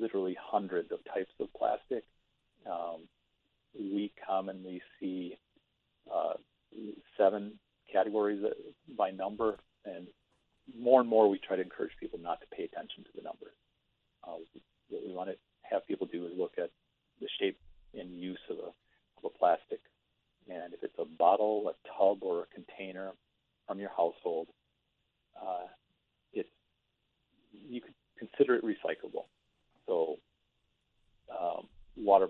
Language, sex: English, male